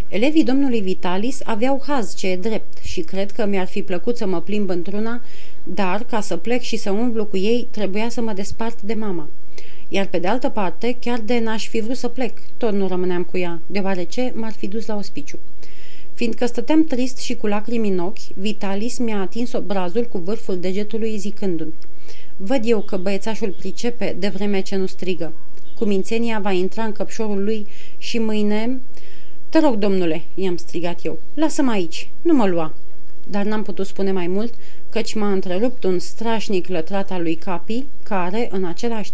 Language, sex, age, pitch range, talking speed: Romanian, female, 30-49, 190-235 Hz, 180 wpm